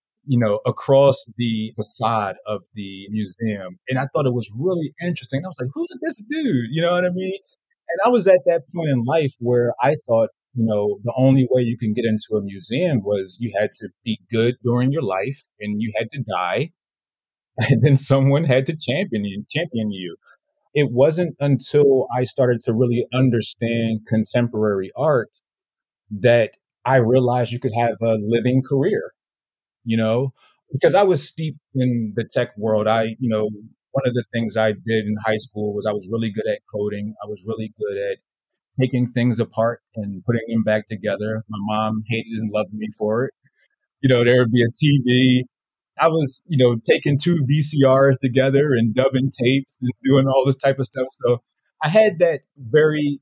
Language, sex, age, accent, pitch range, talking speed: English, male, 30-49, American, 110-140 Hz, 190 wpm